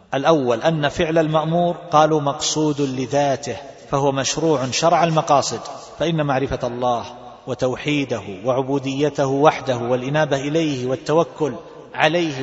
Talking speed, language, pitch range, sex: 100 wpm, Arabic, 130-160 Hz, male